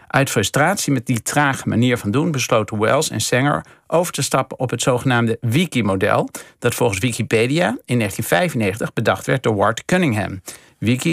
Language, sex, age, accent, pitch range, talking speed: Dutch, male, 50-69, Dutch, 110-140 Hz, 160 wpm